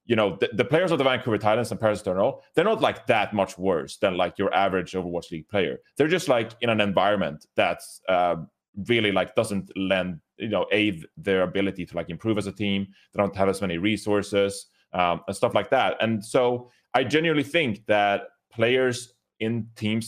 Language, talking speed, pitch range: English, 200 wpm, 95-110 Hz